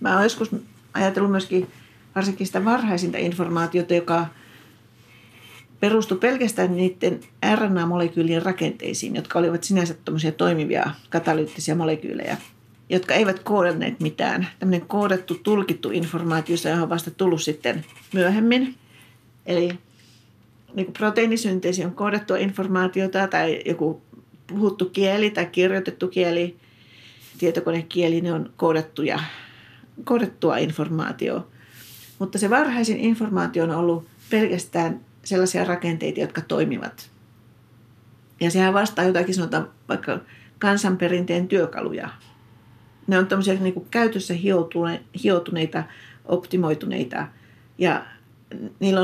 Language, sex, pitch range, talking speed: Finnish, female, 160-195 Hz, 100 wpm